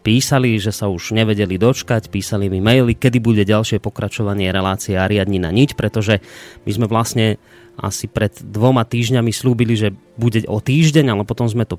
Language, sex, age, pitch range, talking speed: Slovak, male, 30-49, 100-120 Hz, 175 wpm